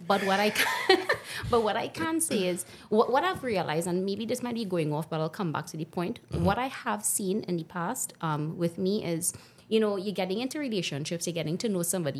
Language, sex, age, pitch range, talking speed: English, female, 30-49, 175-225 Hz, 245 wpm